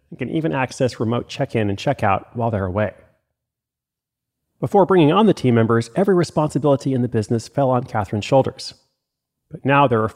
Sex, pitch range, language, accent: male, 115-140 Hz, English, American